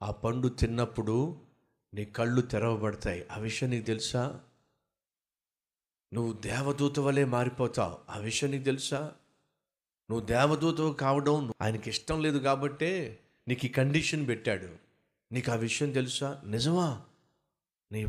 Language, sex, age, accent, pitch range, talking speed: Telugu, male, 50-69, native, 115-170 Hz, 115 wpm